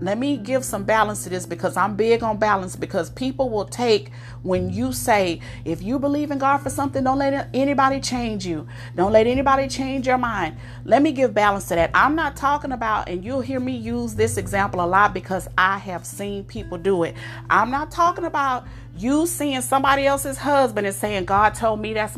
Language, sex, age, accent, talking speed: English, female, 40-59, American, 210 wpm